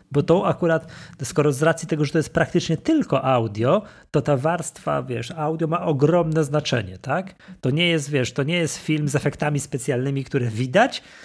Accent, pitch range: native, 125-165 Hz